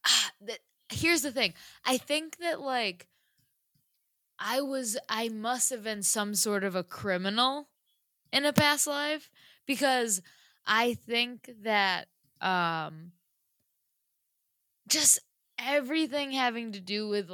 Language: English